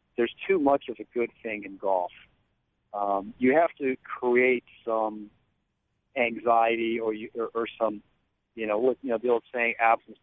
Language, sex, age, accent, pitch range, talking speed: English, male, 40-59, American, 110-140 Hz, 170 wpm